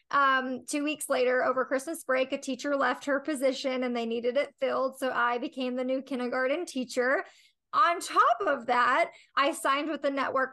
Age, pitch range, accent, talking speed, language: 20-39, 245-290 Hz, American, 190 wpm, English